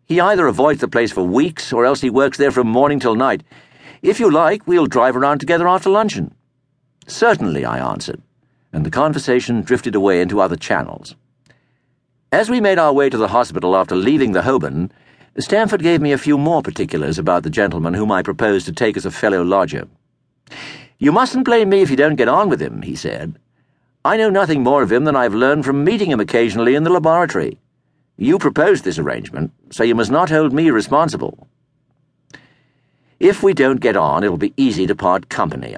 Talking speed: 200 wpm